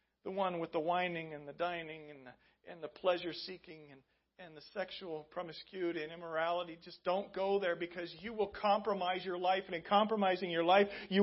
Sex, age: male, 40-59